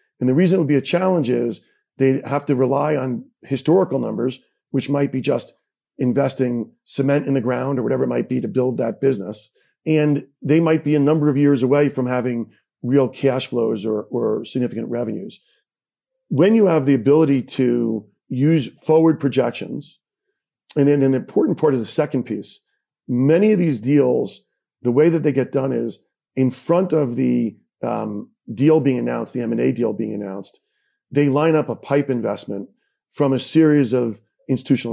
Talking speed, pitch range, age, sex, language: 180 wpm, 120-150 Hz, 40-59, male, English